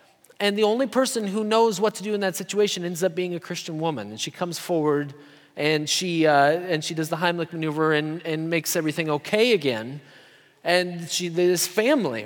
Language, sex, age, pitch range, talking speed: English, male, 30-49, 170-225 Hz, 200 wpm